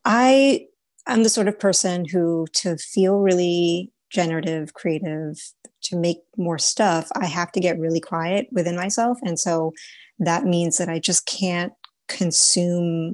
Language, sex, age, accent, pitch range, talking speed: English, female, 30-49, American, 165-195 Hz, 150 wpm